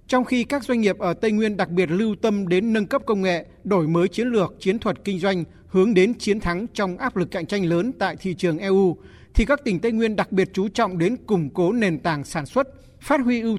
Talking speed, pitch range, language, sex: 255 wpm, 175-225 Hz, Vietnamese, male